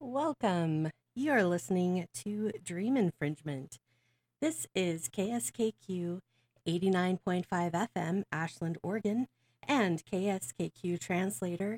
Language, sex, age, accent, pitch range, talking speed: English, female, 30-49, American, 155-210 Hz, 80 wpm